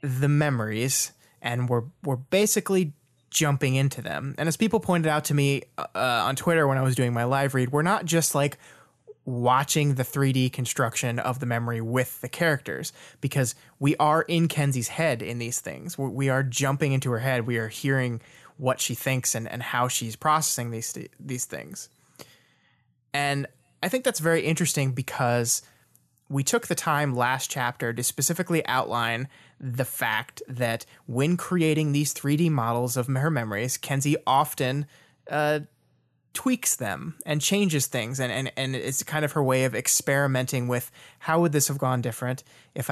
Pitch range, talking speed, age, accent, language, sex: 125-155 Hz, 170 wpm, 20-39, American, English, male